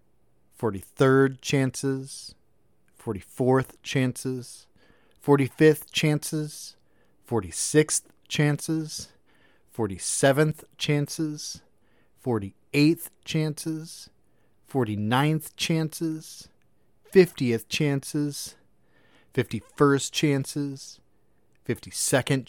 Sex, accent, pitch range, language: male, American, 130-155 Hz, English